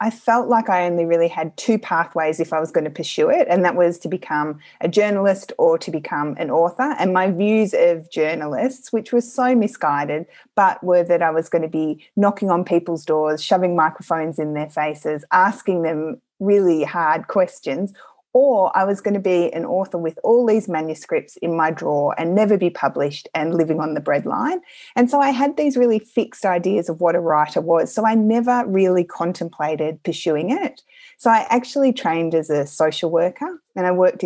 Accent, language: Australian, English